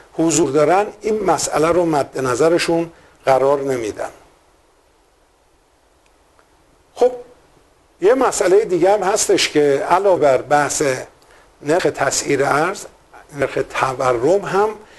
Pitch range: 145-195 Hz